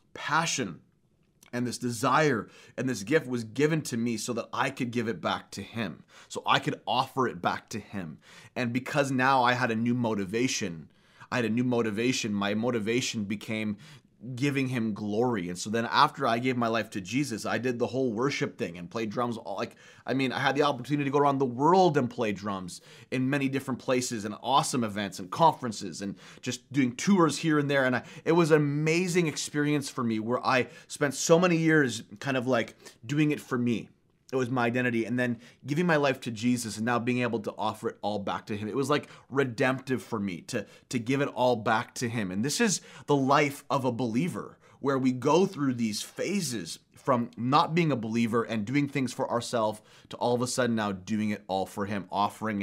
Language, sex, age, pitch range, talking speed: English, male, 30-49, 115-140 Hz, 215 wpm